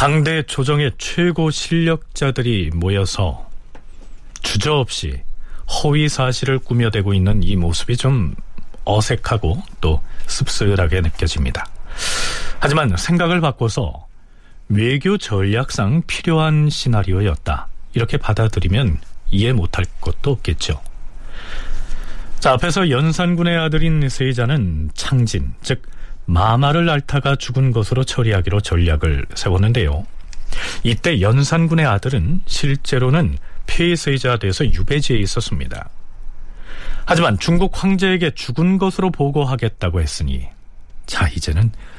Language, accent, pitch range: Korean, native, 90-145 Hz